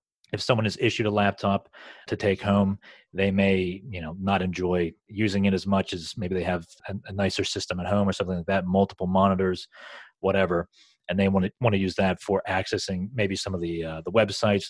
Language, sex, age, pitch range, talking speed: English, male, 30-49, 90-105 Hz, 210 wpm